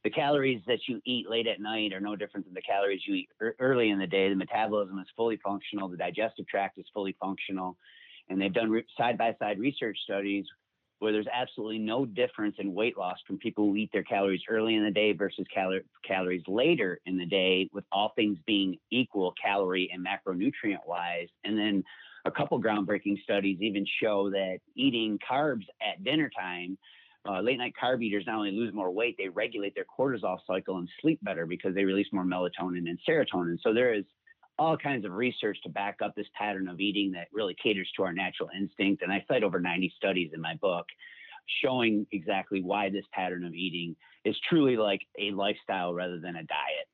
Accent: American